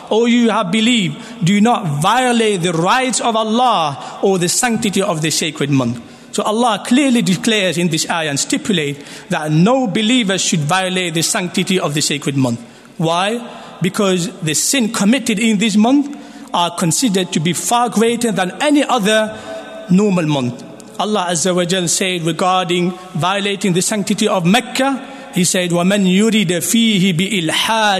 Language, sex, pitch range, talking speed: English, male, 170-225 Hz, 155 wpm